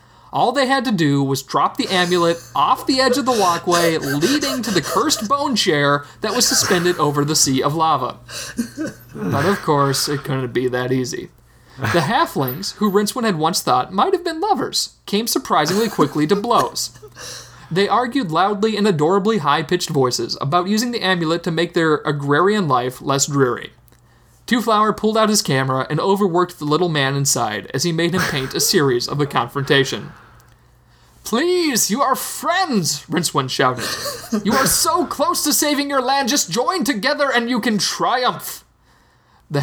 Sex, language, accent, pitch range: male, English, American, 140-230 Hz